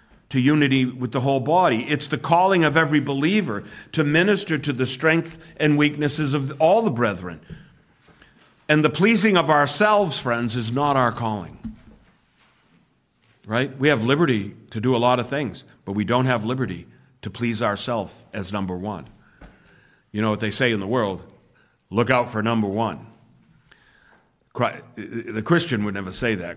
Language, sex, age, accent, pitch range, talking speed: English, male, 60-79, American, 105-135 Hz, 165 wpm